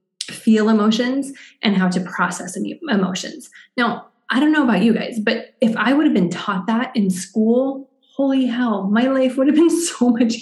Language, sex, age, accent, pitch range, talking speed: English, female, 20-39, American, 200-260 Hz, 190 wpm